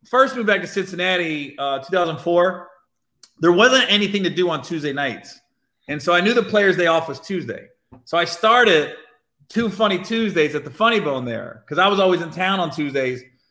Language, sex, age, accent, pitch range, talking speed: English, male, 30-49, American, 165-210 Hz, 195 wpm